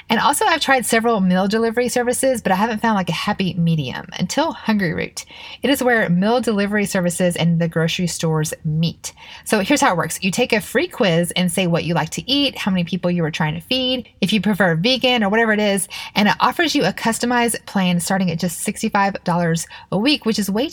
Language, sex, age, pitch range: English, female, 30-49, 175-230 Hz